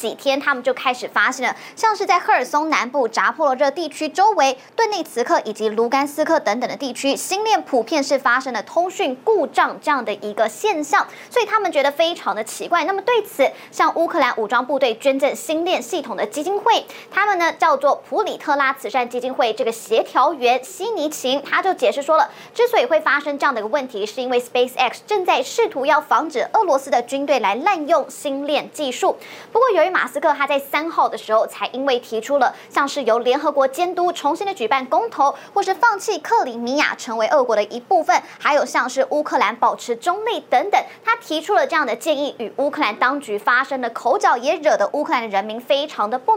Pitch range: 250-355 Hz